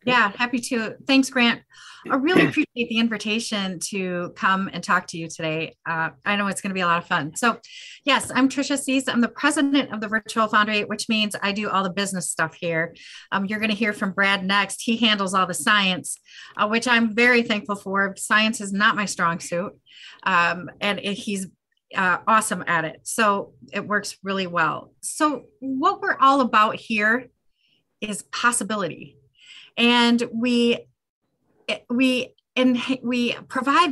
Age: 30-49